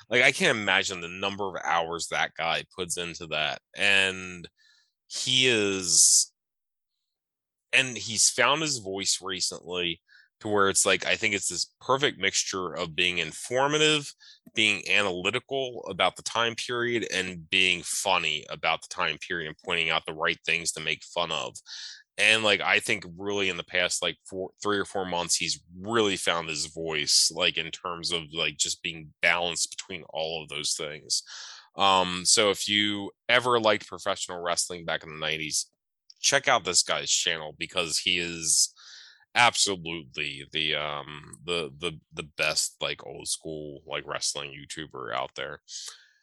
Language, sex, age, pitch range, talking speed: English, male, 20-39, 85-110 Hz, 160 wpm